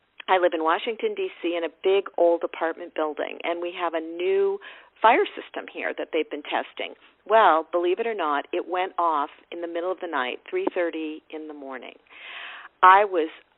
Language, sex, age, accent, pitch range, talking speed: English, female, 50-69, American, 160-205 Hz, 190 wpm